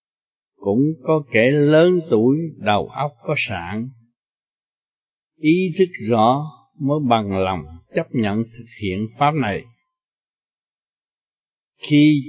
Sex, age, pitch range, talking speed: male, 60-79, 120-170 Hz, 105 wpm